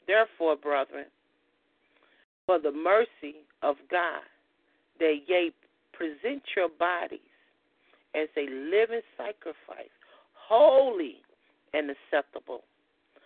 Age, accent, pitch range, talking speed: 40-59, American, 160-225 Hz, 85 wpm